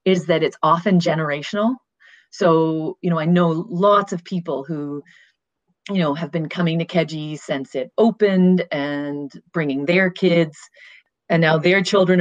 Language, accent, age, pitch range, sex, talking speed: English, American, 30-49, 150-180 Hz, female, 155 wpm